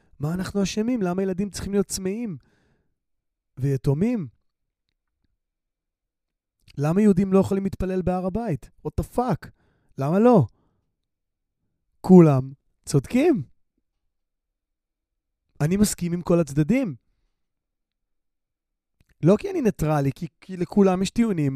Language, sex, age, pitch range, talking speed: Hebrew, male, 30-49, 125-190 Hz, 95 wpm